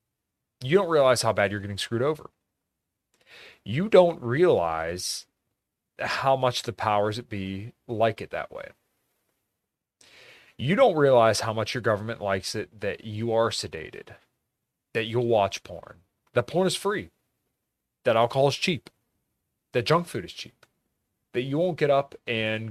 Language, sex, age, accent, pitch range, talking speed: English, male, 30-49, American, 95-120 Hz, 155 wpm